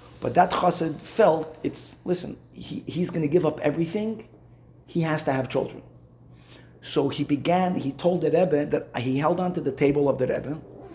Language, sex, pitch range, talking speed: English, male, 130-160 Hz, 190 wpm